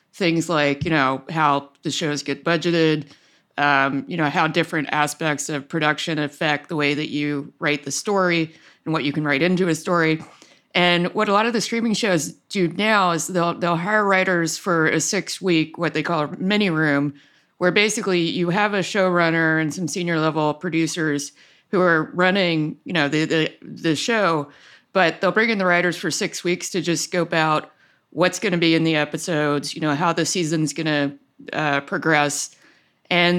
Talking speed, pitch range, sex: 190 wpm, 150-180 Hz, female